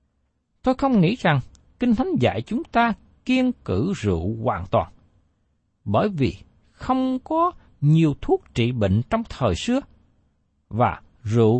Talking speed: 140 wpm